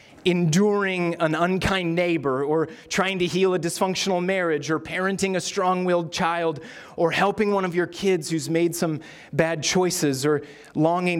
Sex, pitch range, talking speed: male, 140-190 Hz, 155 wpm